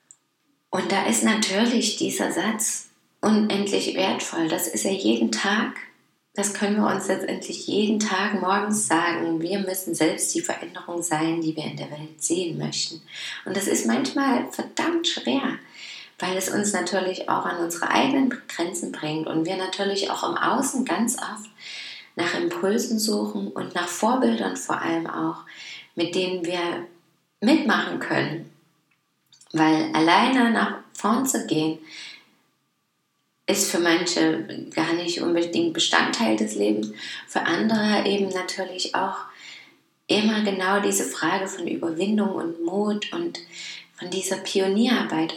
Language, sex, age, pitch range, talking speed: German, female, 20-39, 170-220 Hz, 140 wpm